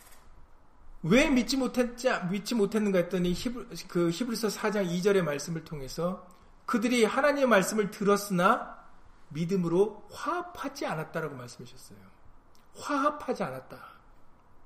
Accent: native